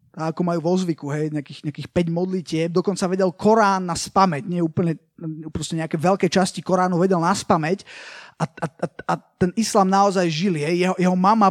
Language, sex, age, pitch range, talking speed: Slovak, male, 20-39, 170-200 Hz, 190 wpm